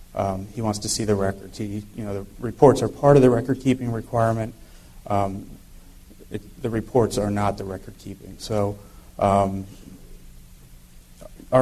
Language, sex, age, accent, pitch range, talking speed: English, male, 30-49, American, 100-110 Hz, 145 wpm